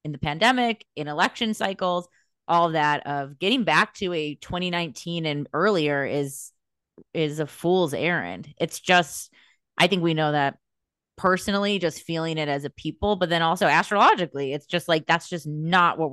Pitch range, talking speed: 150-185 Hz, 170 wpm